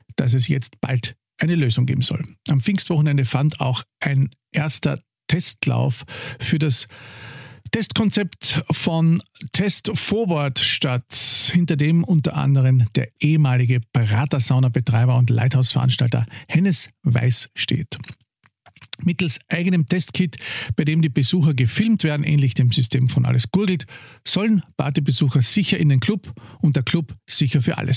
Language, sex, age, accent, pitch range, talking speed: German, male, 50-69, Austrian, 125-160 Hz, 130 wpm